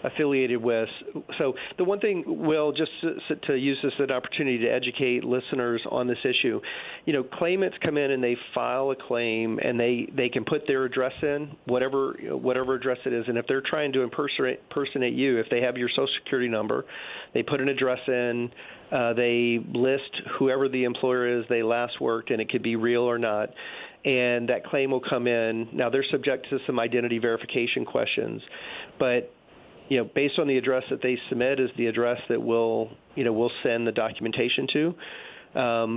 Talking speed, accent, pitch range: 195 wpm, American, 120-135 Hz